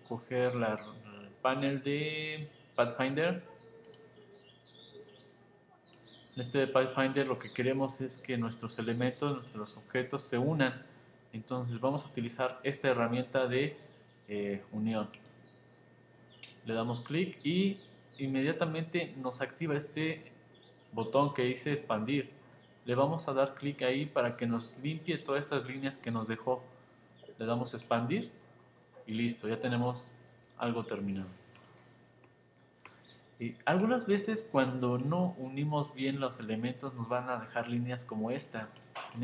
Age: 20-39